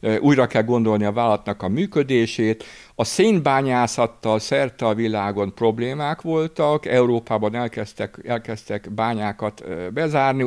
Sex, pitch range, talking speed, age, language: male, 105-135 Hz, 110 wpm, 60-79, Hungarian